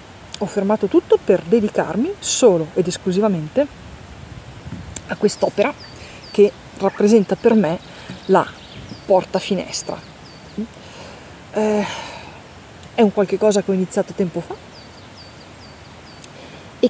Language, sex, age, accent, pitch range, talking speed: Italian, female, 30-49, native, 185-230 Hz, 100 wpm